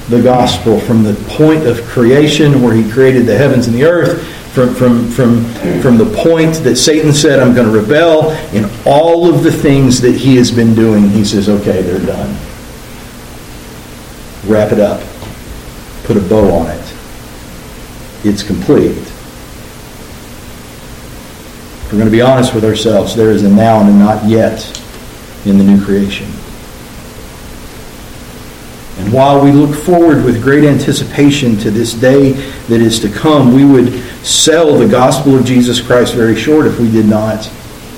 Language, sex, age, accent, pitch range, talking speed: English, male, 50-69, American, 100-130 Hz, 160 wpm